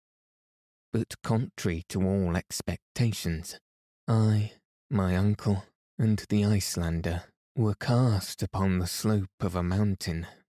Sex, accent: male, British